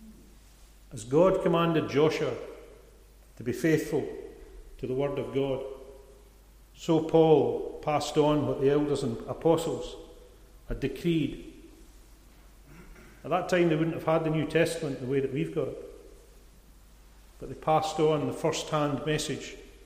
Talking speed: 140 wpm